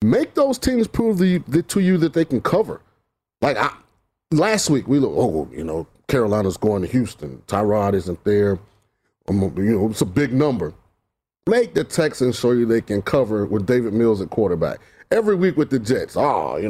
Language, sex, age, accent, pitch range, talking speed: English, male, 30-49, American, 115-165 Hz, 200 wpm